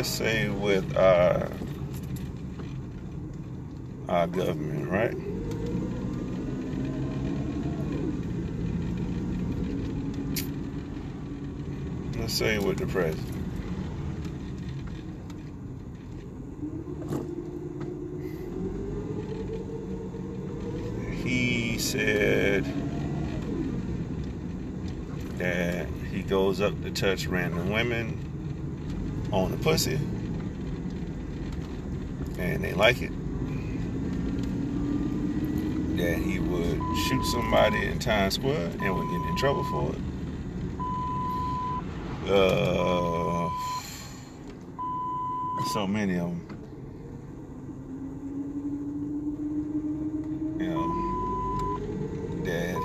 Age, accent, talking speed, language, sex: 50-69, American, 55 wpm, English, male